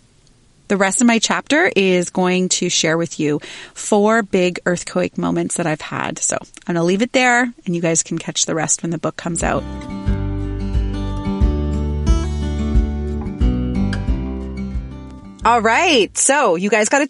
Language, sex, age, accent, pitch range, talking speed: English, female, 30-49, American, 170-240 Hz, 155 wpm